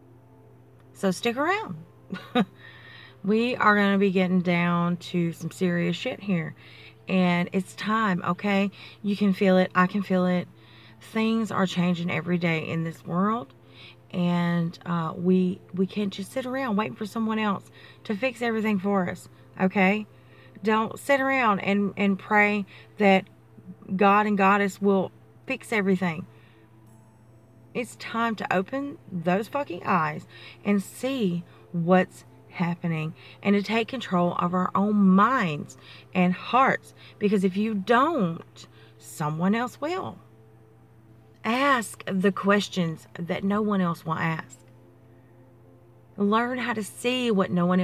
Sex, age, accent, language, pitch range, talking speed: female, 30-49, American, English, 135-205 Hz, 140 wpm